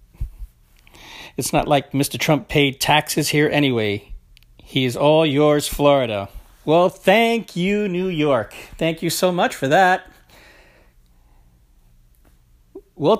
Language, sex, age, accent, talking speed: English, male, 40-59, American, 120 wpm